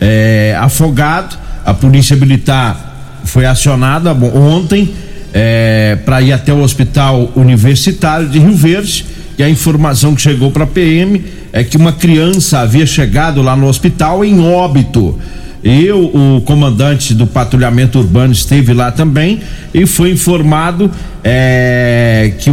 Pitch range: 130-160 Hz